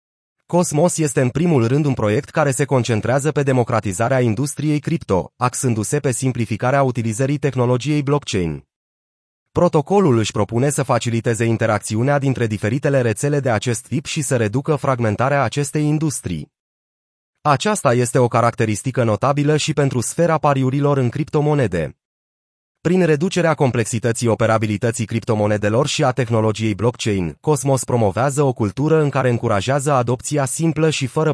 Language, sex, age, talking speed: Romanian, male, 30-49, 130 wpm